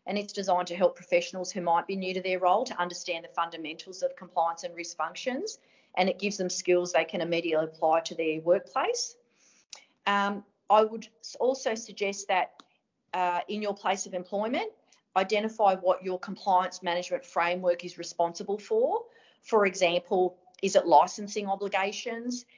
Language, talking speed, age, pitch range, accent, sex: English, 160 wpm, 40-59, 180-225 Hz, Australian, female